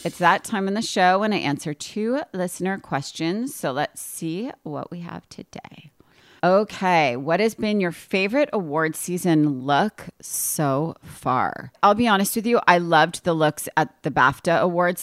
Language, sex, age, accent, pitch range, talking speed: English, female, 30-49, American, 145-185 Hz, 170 wpm